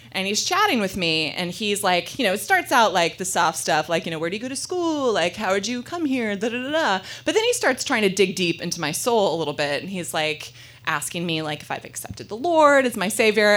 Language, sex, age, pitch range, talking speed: English, female, 20-39, 175-260 Hz, 285 wpm